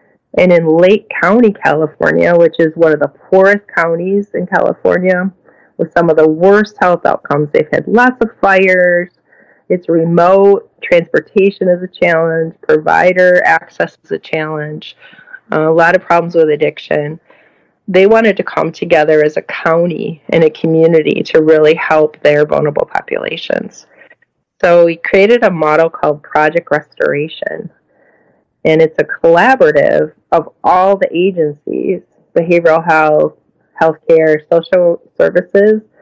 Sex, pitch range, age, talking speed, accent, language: female, 160-205 Hz, 30-49, 135 wpm, American, English